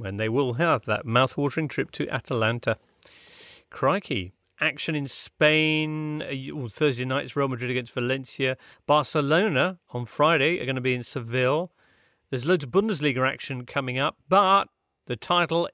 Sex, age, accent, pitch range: male, 40-59, British, 115-155 Hz